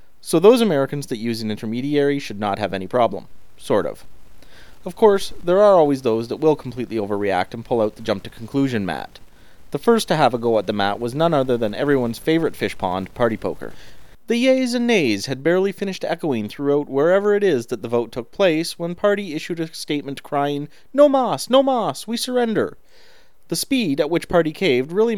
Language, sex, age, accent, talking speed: English, male, 30-49, American, 205 wpm